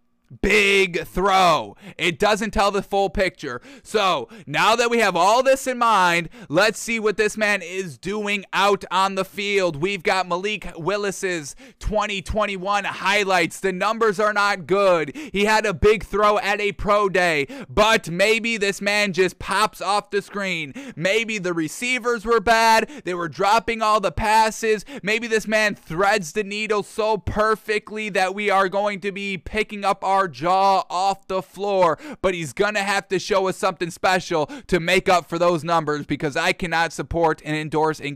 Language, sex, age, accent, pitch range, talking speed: English, male, 20-39, American, 165-205 Hz, 175 wpm